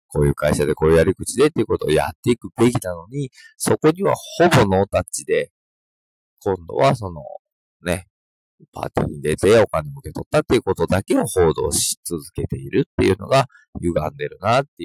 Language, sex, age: Japanese, male, 40-59